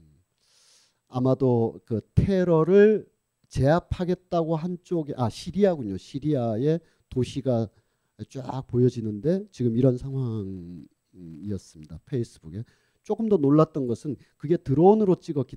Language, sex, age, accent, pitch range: Korean, male, 40-59, native, 120-170 Hz